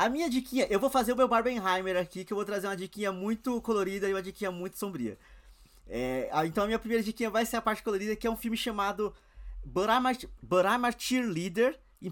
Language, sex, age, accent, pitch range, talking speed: Portuguese, male, 20-39, Brazilian, 180-235 Hz, 210 wpm